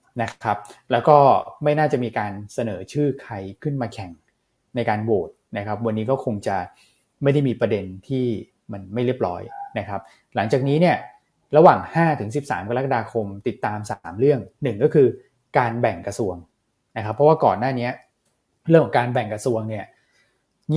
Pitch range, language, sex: 100-135 Hz, Thai, male